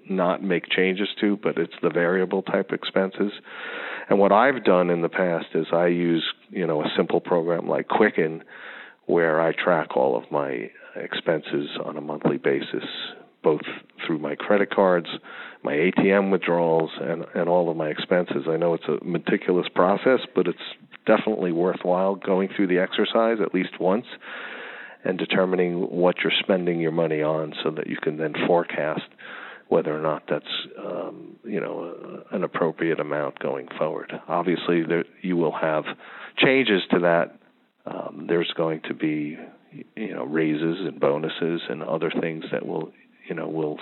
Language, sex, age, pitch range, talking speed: English, male, 50-69, 80-95 Hz, 165 wpm